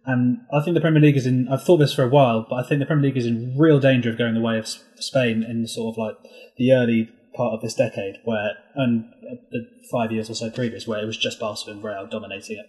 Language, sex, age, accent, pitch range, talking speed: English, male, 20-39, British, 115-145 Hz, 265 wpm